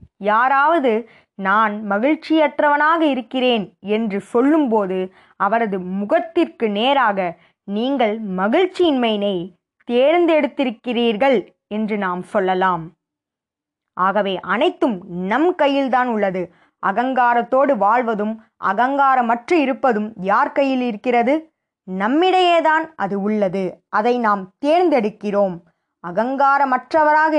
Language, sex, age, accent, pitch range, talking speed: Tamil, female, 20-39, native, 200-280 Hz, 75 wpm